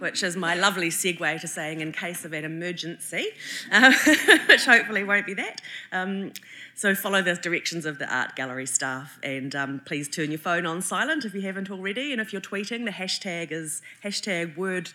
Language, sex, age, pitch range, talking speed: English, female, 30-49, 155-195 Hz, 195 wpm